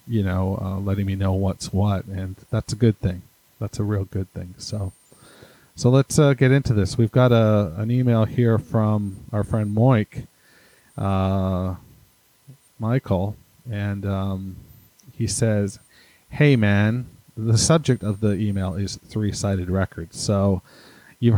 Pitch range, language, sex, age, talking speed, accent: 95-115 Hz, English, male, 40-59, 150 wpm, American